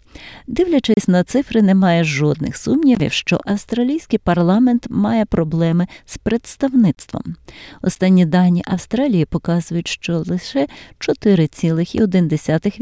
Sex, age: female, 30-49